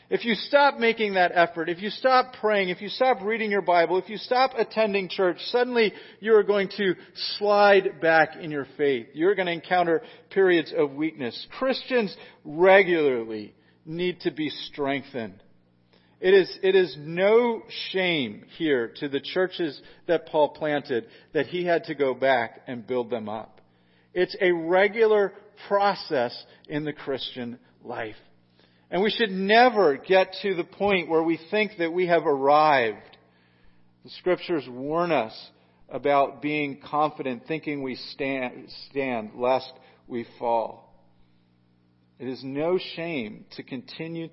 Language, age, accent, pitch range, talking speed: English, 40-59, American, 135-215 Hz, 150 wpm